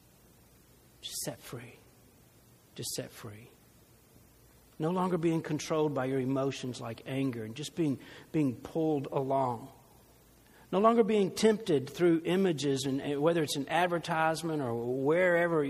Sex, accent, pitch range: male, American, 145-205 Hz